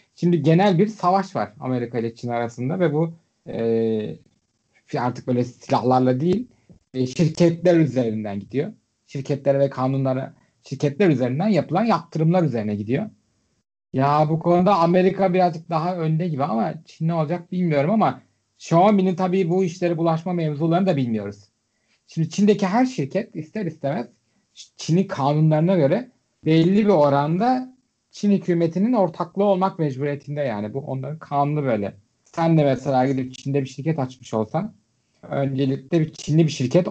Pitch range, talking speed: 125-175 Hz, 145 wpm